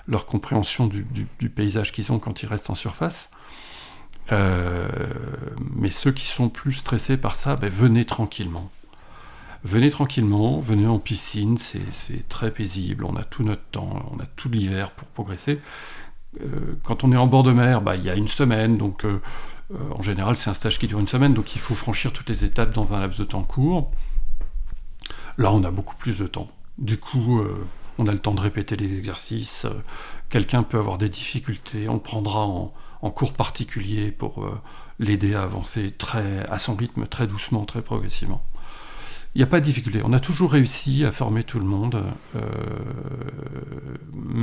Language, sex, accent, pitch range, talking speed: French, male, French, 105-125 Hz, 190 wpm